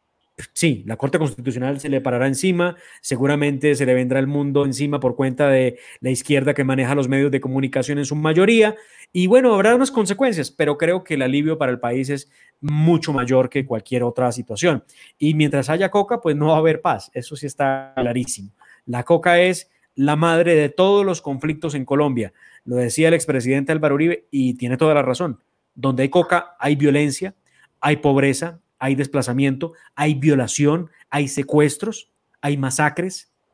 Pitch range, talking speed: 130-165 Hz, 180 wpm